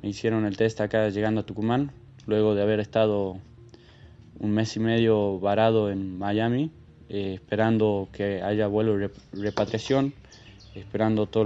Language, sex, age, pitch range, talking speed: Spanish, male, 20-39, 100-110 Hz, 150 wpm